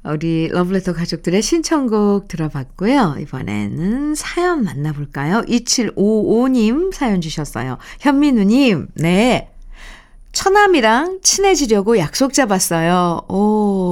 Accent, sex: native, female